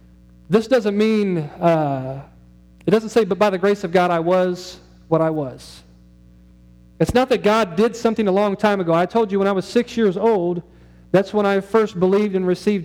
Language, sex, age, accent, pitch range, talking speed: English, male, 40-59, American, 160-210 Hz, 205 wpm